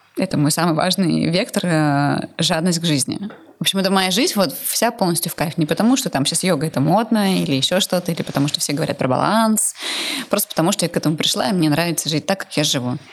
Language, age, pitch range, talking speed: Russian, 20-39, 160-195 Hz, 240 wpm